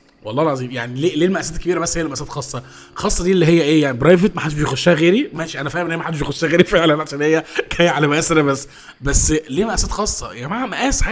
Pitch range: 140-185 Hz